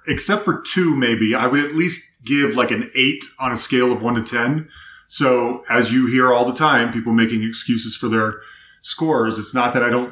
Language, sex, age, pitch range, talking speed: English, male, 30-49, 120-160 Hz, 220 wpm